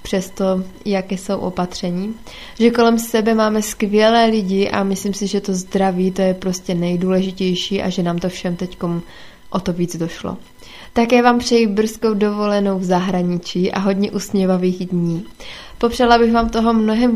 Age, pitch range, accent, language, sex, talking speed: 20-39, 190-220 Hz, native, Czech, female, 160 wpm